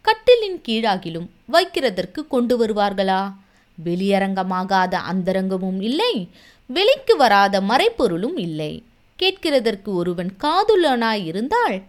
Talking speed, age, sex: 75 wpm, 20-39, female